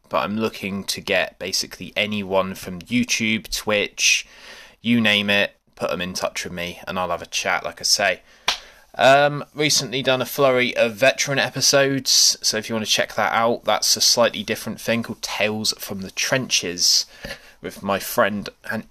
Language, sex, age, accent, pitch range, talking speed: English, male, 20-39, British, 100-120 Hz, 180 wpm